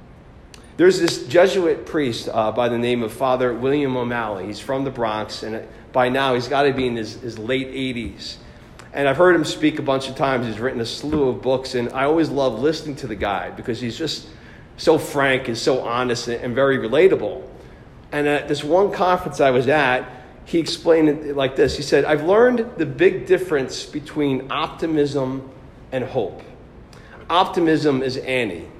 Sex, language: male, English